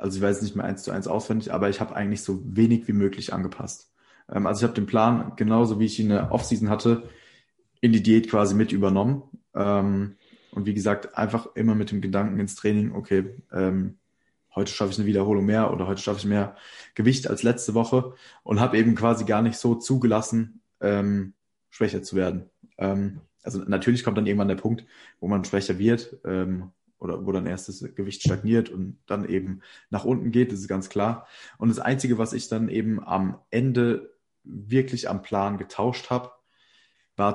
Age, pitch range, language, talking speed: 20-39, 100-115 Hz, German, 200 wpm